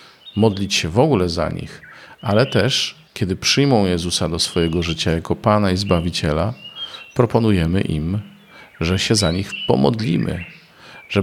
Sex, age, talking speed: male, 40-59, 140 wpm